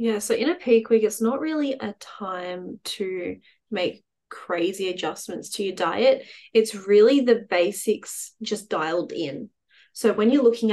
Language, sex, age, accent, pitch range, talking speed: English, female, 20-39, Australian, 185-230 Hz, 160 wpm